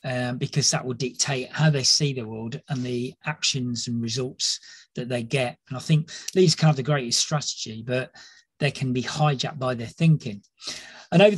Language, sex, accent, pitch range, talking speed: English, male, British, 130-155 Hz, 200 wpm